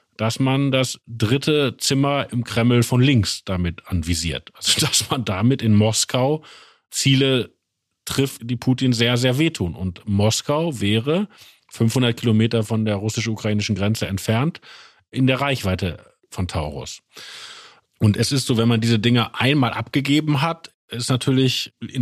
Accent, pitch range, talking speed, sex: German, 110-135 Hz, 145 wpm, male